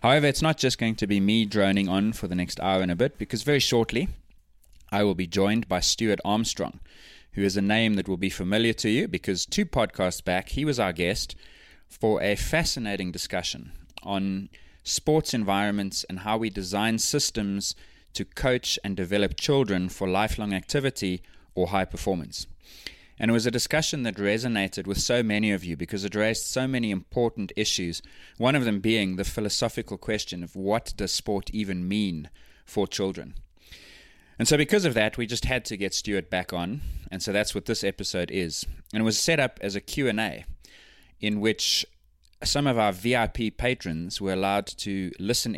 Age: 20-39